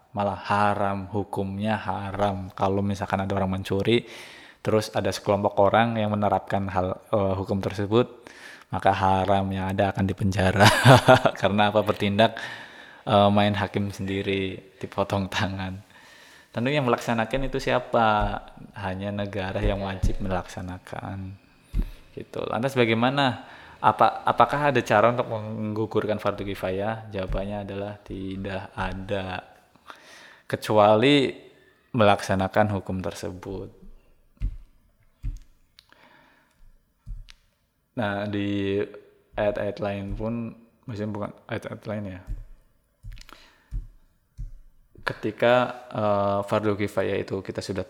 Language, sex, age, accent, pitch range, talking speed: Indonesian, male, 20-39, native, 95-110 Hz, 100 wpm